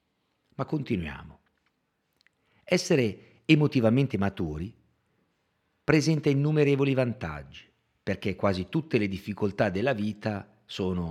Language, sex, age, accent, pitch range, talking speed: Italian, male, 50-69, native, 95-135 Hz, 85 wpm